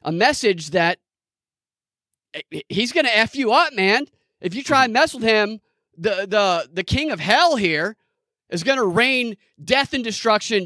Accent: American